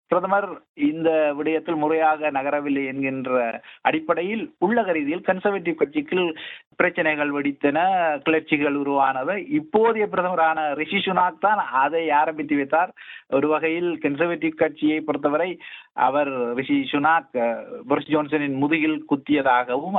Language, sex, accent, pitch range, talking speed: Tamil, male, native, 140-180 Hz, 105 wpm